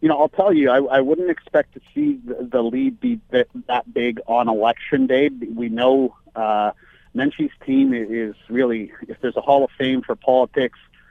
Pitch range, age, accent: 120-150 Hz, 40-59, American